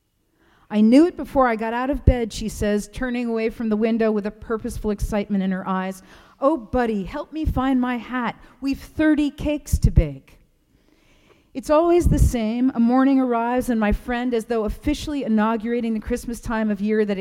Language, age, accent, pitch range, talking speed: English, 40-59, American, 195-250 Hz, 190 wpm